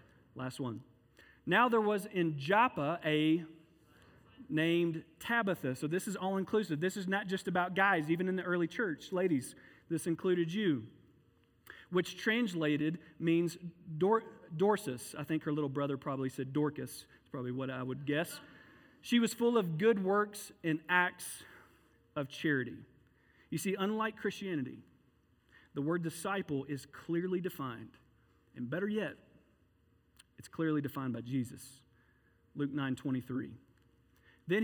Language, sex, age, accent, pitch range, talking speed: English, male, 40-59, American, 135-185 Hz, 135 wpm